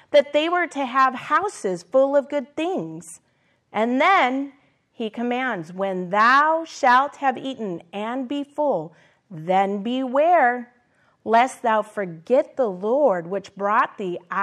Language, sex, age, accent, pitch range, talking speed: English, female, 30-49, American, 190-275 Hz, 135 wpm